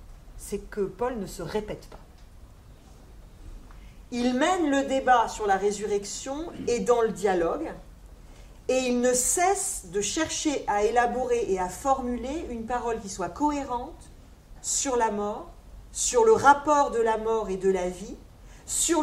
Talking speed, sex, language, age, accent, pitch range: 150 wpm, female, French, 40-59, French, 185-265 Hz